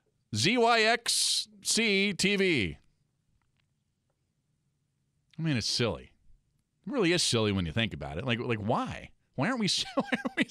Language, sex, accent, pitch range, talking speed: English, male, American, 140-230 Hz, 135 wpm